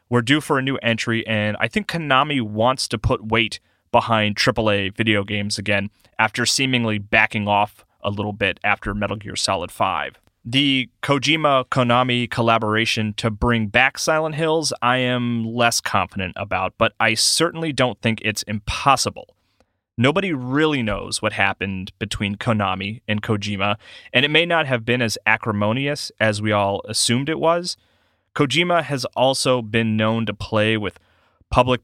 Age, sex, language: 30-49, male, English